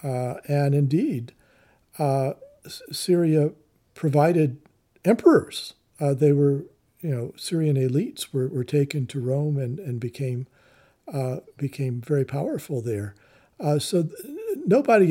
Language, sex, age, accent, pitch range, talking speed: English, male, 50-69, American, 125-150 Hz, 120 wpm